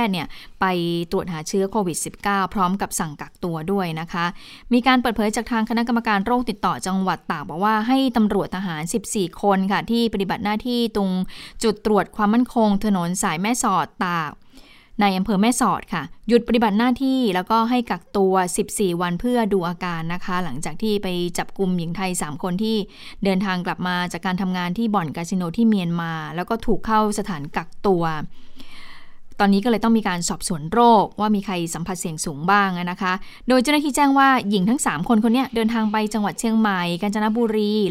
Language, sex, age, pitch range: Thai, female, 20-39, 180-225 Hz